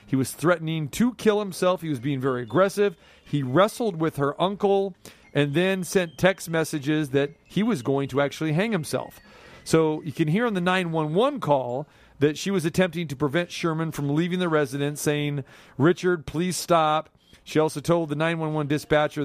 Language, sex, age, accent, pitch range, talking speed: English, male, 40-59, American, 145-190 Hz, 180 wpm